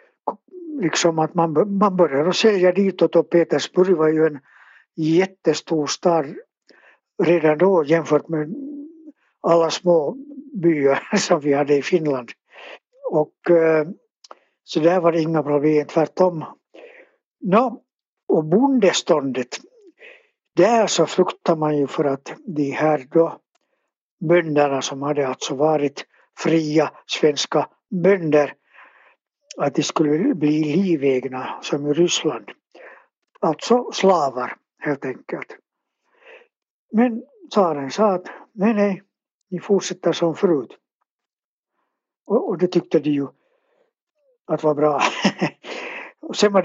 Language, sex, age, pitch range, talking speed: Swedish, male, 60-79, 150-205 Hz, 115 wpm